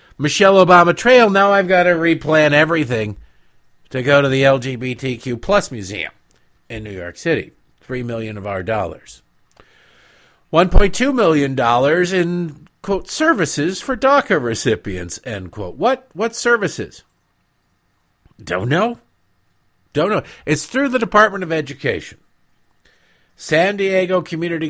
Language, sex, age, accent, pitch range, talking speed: English, male, 50-69, American, 110-175 Hz, 125 wpm